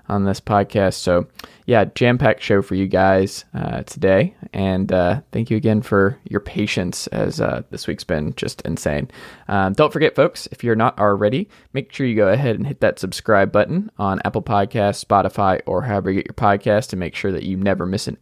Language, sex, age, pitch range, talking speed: English, male, 20-39, 95-120 Hz, 210 wpm